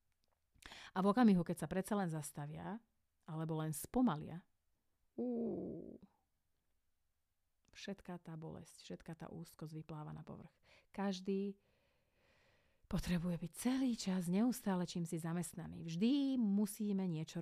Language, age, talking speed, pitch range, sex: Slovak, 30-49, 115 wpm, 155-205 Hz, female